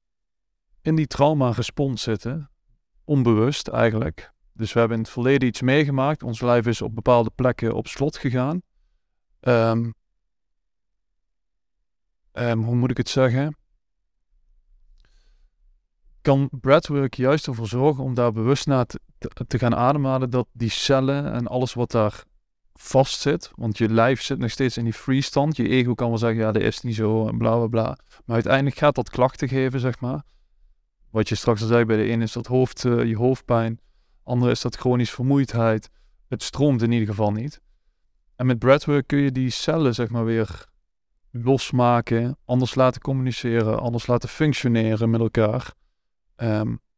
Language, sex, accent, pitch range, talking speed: Dutch, male, Dutch, 115-135 Hz, 165 wpm